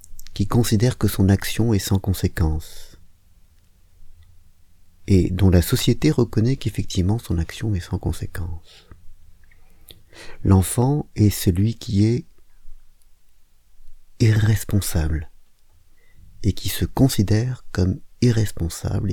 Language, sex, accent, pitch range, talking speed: French, male, French, 90-110 Hz, 95 wpm